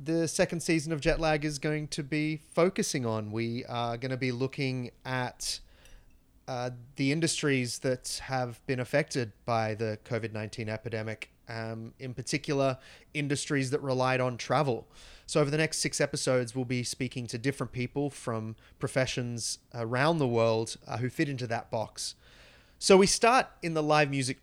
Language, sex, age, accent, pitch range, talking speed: English, male, 30-49, Australian, 120-150 Hz, 160 wpm